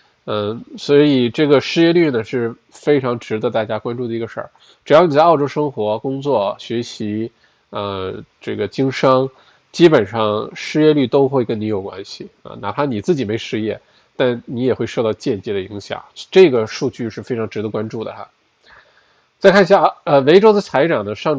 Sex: male